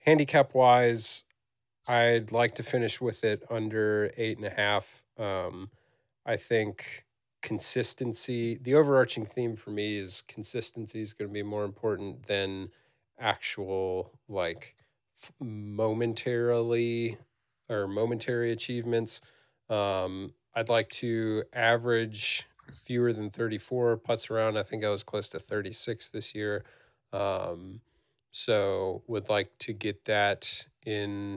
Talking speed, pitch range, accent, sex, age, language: 120 wpm, 105-120 Hz, American, male, 40-59, English